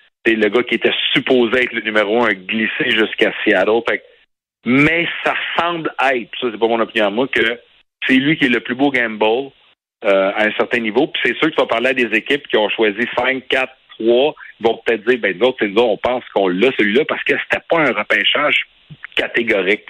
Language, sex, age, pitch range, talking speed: French, male, 60-79, 110-140 Hz, 215 wpm